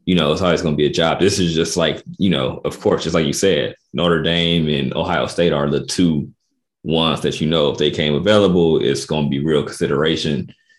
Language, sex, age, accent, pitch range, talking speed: English, male, 30-49, American, 75-95 Hz, 230 wpm